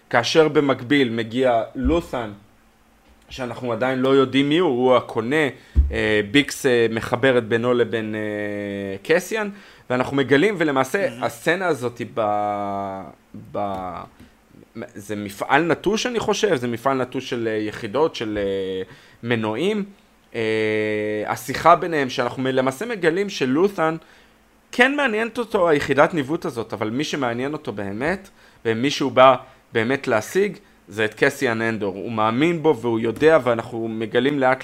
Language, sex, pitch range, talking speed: Hebrew, male, 115-155 Hz, 120 wpm